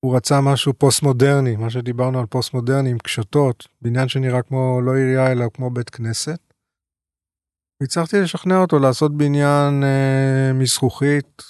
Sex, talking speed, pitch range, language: male, 145 wpm, 120-145 Hz, Hebrew